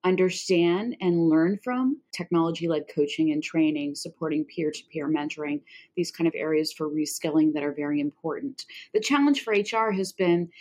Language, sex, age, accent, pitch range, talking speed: English, female, 30-49, American, 170-220 Hz, 170 wpm